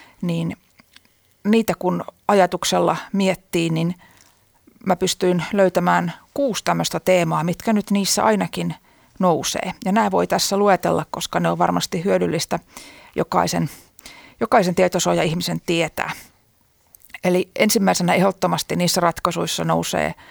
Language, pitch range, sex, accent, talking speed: Finnish, 165-190 Hz, female, native, 110 wpm